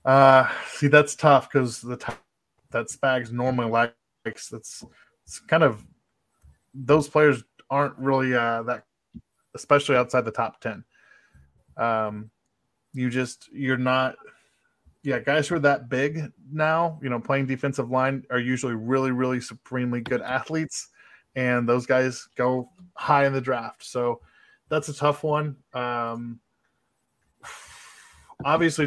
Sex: male